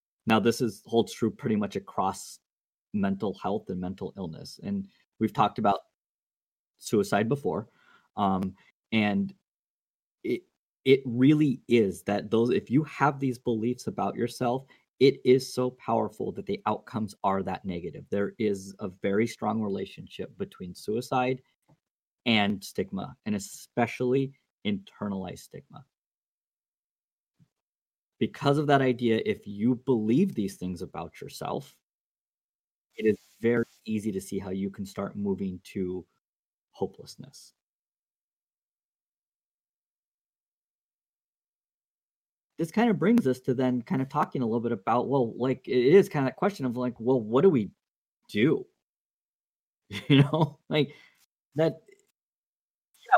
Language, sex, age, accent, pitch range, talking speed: English, male, 20-39, American, 105-150 Hz, 130 wpm